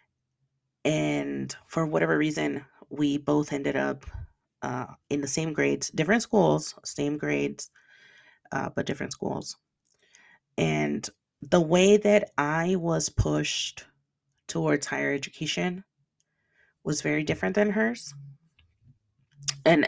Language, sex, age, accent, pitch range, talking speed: English, female, 30-49, American, 125-175 Hz, 110 wpm